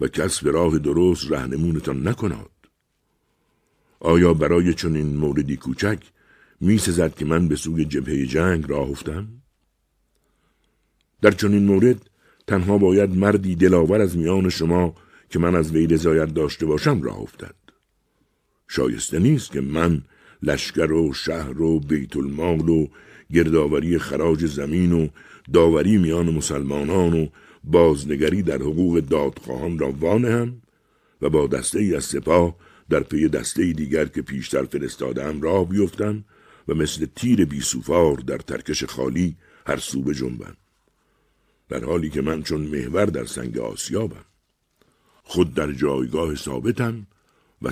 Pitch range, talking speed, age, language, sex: 75-95 Hz, 135 wpm, 60-79, Persian, male